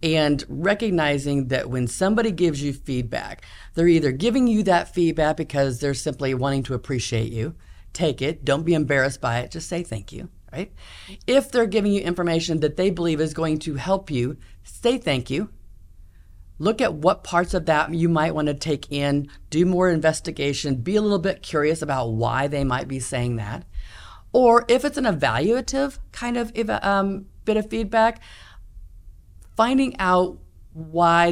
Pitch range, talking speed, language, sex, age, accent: 130-185 Hz, 170 wpm, English, female, 40-59, American